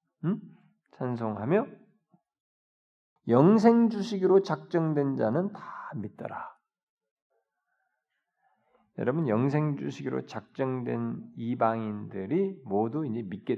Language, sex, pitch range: Korean, male, 120-170 Hz